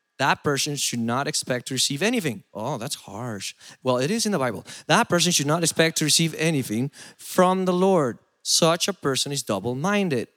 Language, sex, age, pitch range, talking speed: English, male, 30-49, 135-185 Hz, 190 wpm